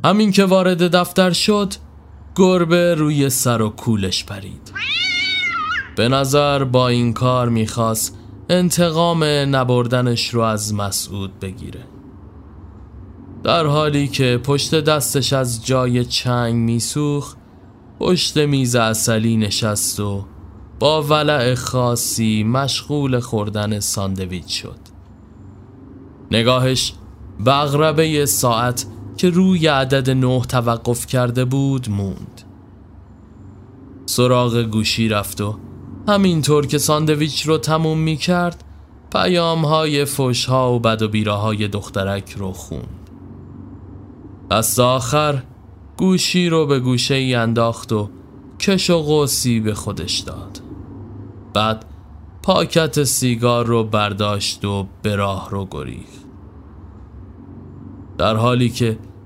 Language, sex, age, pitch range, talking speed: Persian, male, 20-39, 105-145 Hz, 105 wpm